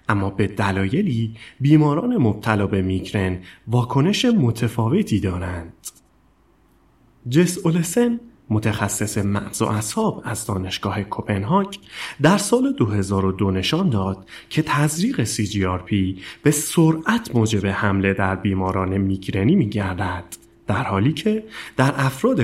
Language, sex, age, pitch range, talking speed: Persian, male, 30-49, 95-145 Hz, 110 wpm